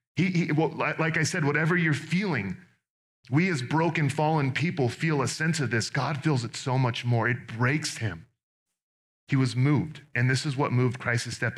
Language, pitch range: English, 105-130 Hz